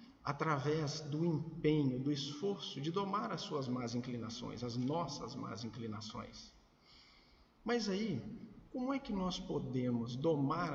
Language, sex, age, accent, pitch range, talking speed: Portuguese, male, 50-69, Brazilian, 120-170 Hz, 130 wpm